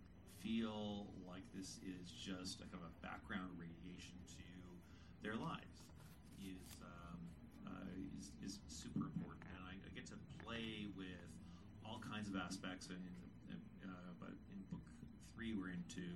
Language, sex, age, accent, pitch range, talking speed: English, male, 40-59, American, 90-105 Hz, 150 wpm